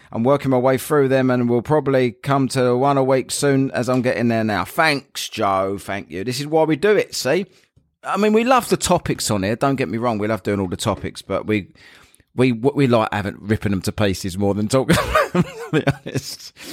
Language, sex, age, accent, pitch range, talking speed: English, male, 30-49, British, 105-145 Hz, 230 wpm